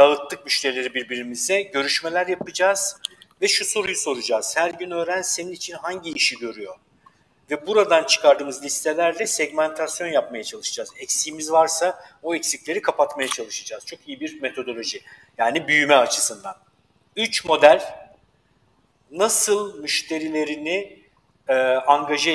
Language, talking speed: Turkish, 115 wpm